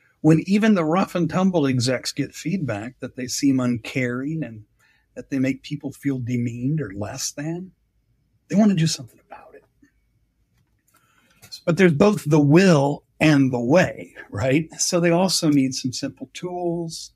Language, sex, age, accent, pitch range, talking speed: English, male, 50-69, American, 125-165 Hz, 160 wpm